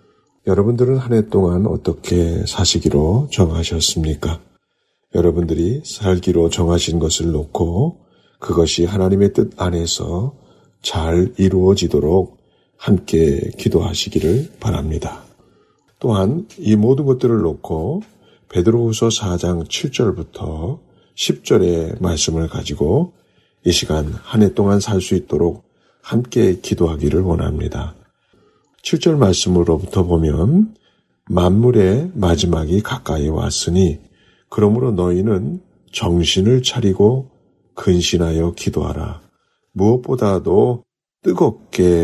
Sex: male